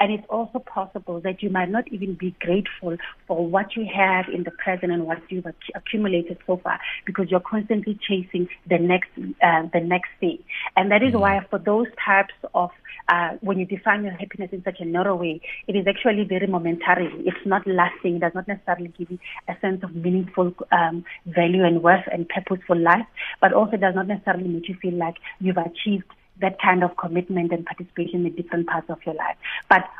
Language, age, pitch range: English, 30-49, 175-200 Hz